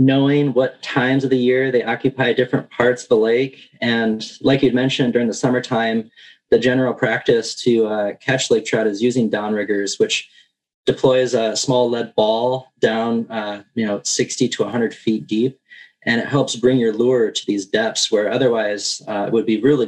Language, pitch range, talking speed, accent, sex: English, 110-130 Hz, 185 wpm, American, male